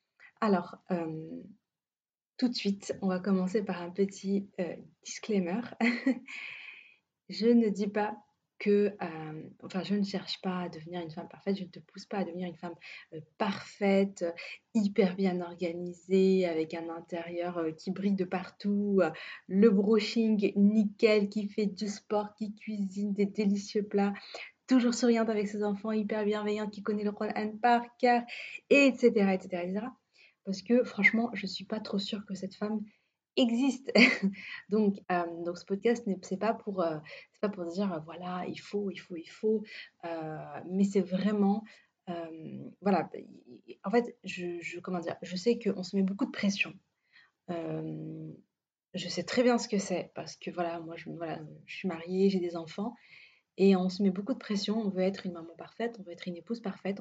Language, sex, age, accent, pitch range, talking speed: French, female, 20-39, French, 175-215 Hz, 190 wpm